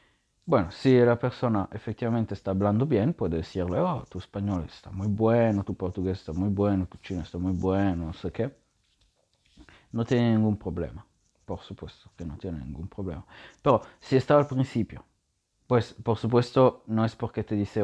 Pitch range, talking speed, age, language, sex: 95-115 Hz, 180 wpm, 30-49, English, male